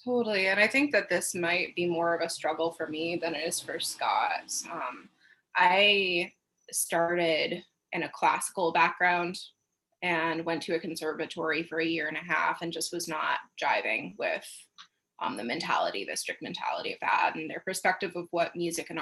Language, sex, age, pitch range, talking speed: English, female, 20-39, 170-200 Hz, 185 wpm